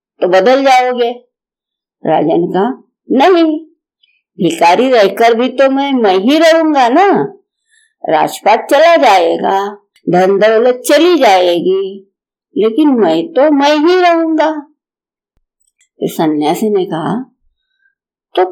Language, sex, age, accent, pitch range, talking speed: Hindi, female, 50-69, native, 205-310 Hz, 105 wpm